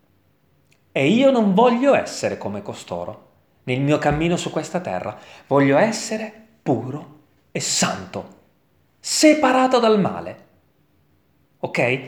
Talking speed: 110 wpm